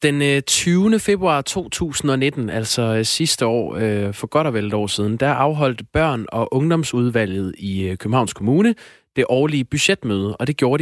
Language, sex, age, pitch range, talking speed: Danish, male, 20-39, 110-135 Hz, 155 wpm